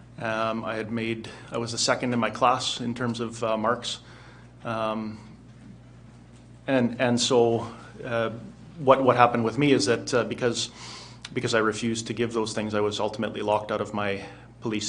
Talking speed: 180 wpm